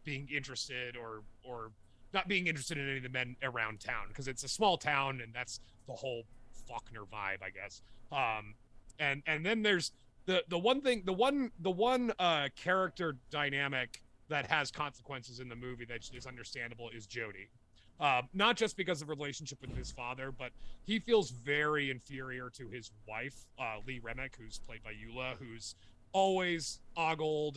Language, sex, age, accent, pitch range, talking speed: English, male, 30-49, American, 115-145 Hz, 180 wpm